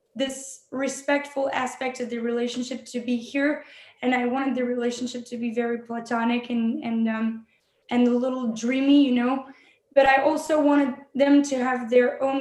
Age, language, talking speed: 10-29, English, 175 wpm